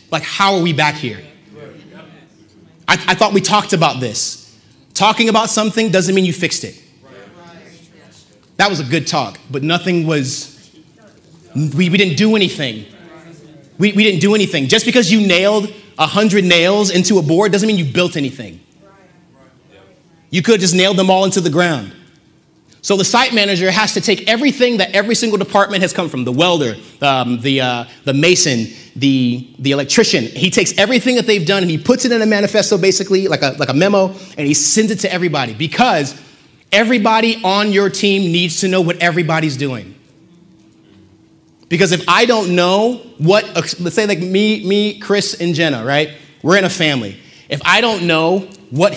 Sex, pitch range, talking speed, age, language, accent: male, 150-200 Hz, 185 wpm, 30-49, English, American